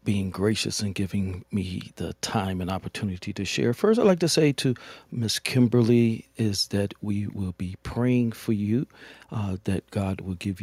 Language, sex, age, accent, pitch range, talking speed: English, male, 50-69, American, 100-140 Hz, 180 wpm